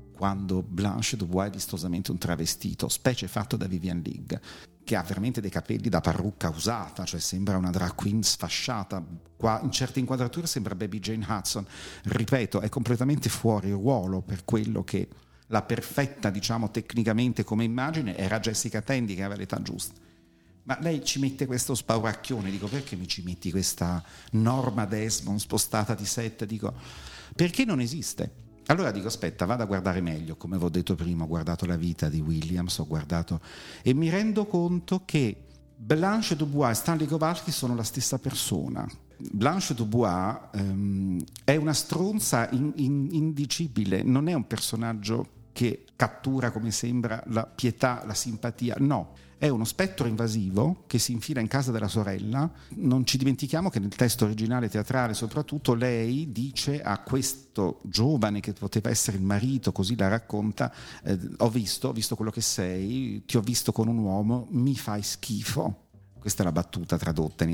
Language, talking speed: Italian, 165 wpm